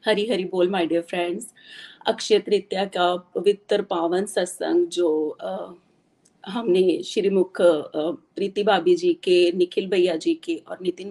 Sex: female